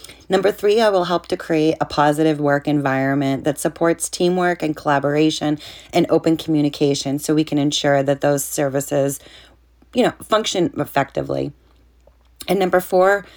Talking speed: 150 wpm